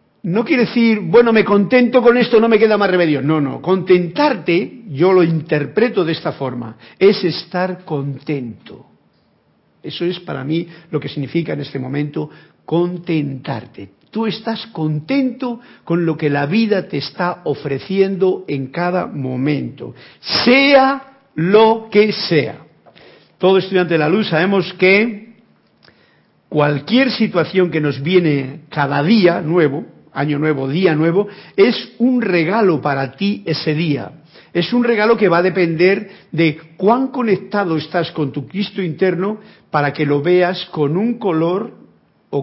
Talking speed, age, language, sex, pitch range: 145 wpm, 50-69, Spanish, male, 150-205 Hz